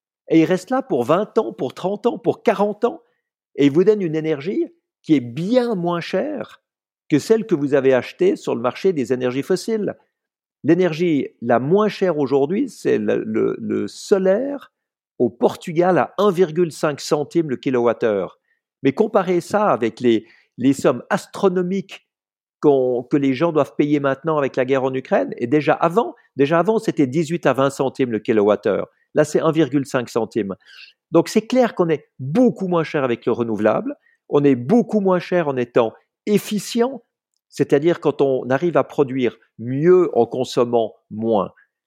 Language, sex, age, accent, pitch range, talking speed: French, male, 50-69, French, 135-195 Hz, 170 wpm